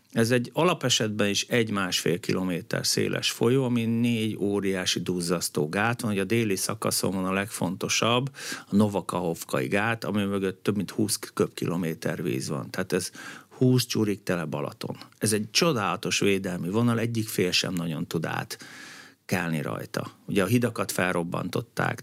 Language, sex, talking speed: Hungarian, male, 150 wpm